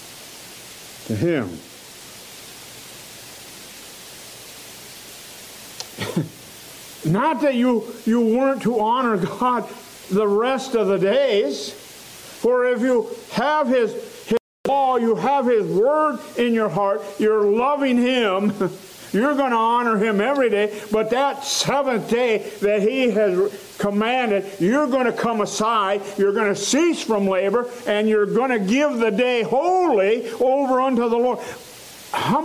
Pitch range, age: 205-255 Hz, 50-69